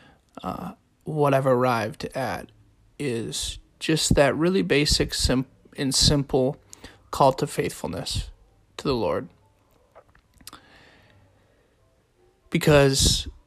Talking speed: 90 wpm